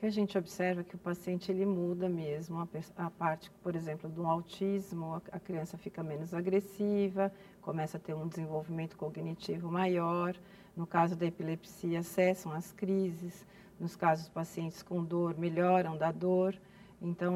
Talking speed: 150 wpm